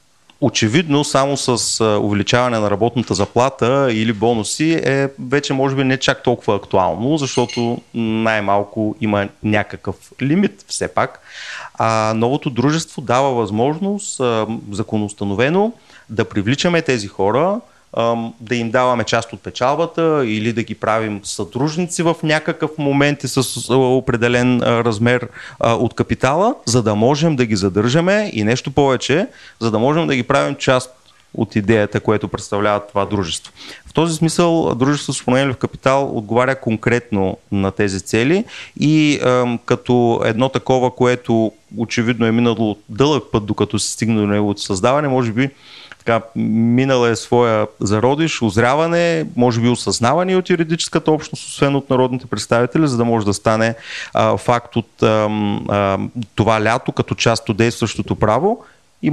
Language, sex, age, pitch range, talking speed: Bulgarian, male, 30-49, 110-140 Hz, 145 wpm